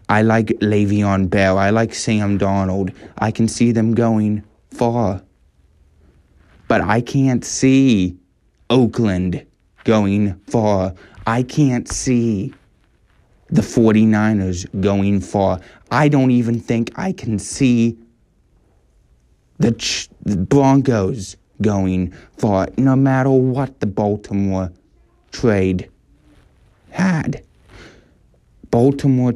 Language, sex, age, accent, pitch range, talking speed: English, male, 20-39, American, 100-135 Hz, 100 wpm